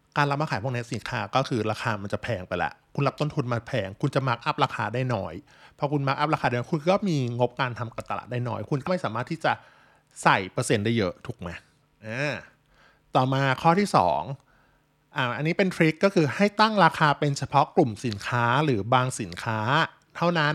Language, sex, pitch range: Thai, male, 120-155 Hz